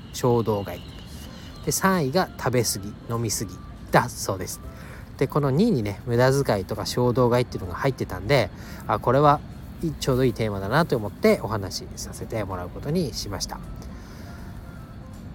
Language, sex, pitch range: Japanese, male, 100-135 Hz